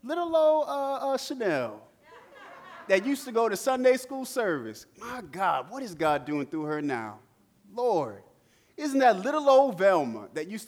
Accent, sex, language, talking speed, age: American, male, English, 170 wpm, 30-49